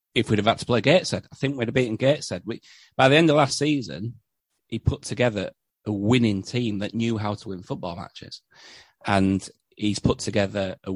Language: English